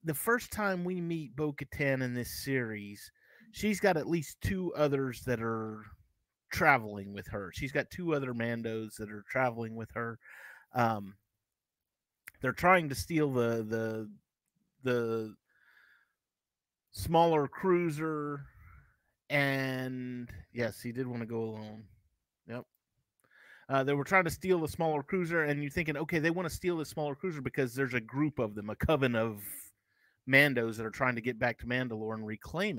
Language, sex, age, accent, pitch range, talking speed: English, male, 30-49, American, 120-170 Hz, 165 wpm